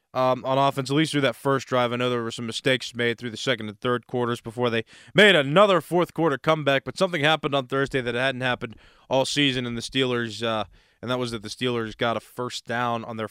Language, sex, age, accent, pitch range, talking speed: English, male, 20-39, American, 115-145 Hz, 250 wpm